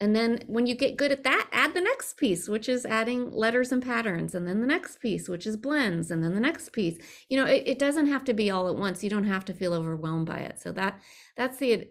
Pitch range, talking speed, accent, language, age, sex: 180-245 Hz, 275 wpm, American, English, 30-49, female